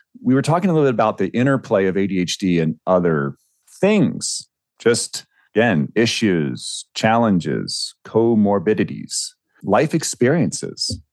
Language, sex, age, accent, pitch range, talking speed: English, male, 40-59, American, 90-120 Hz, 115 wpm